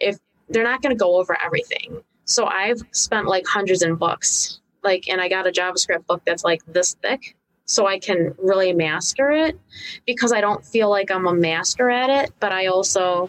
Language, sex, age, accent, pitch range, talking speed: English, female, 20-39, American, 165-195 Hz, 200 wpm